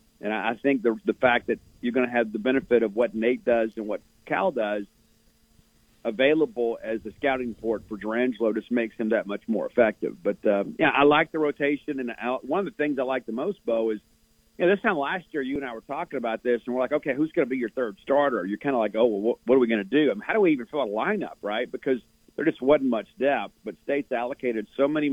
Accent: American